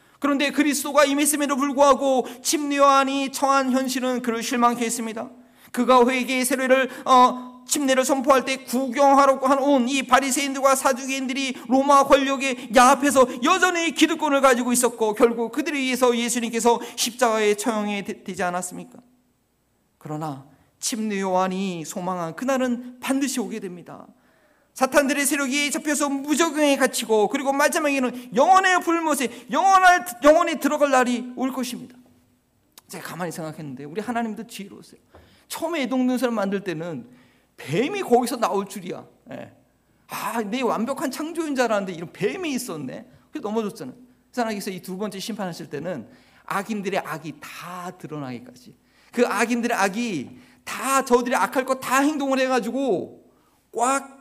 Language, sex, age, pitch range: Korean, male, 40-59, 225-275 Hz